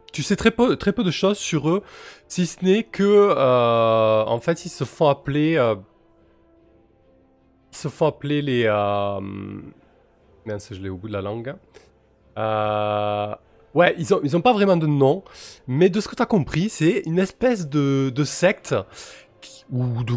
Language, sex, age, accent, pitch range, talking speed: French, male, 20-39, French, 110-160 Hz, 185 wpm